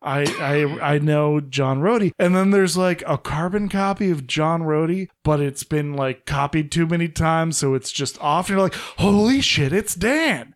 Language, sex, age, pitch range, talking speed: English, male, 20-39, 140-185 Hz, 200 wpm